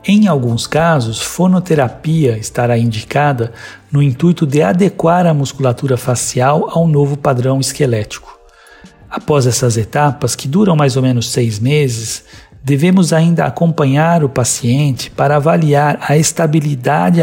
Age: 60-79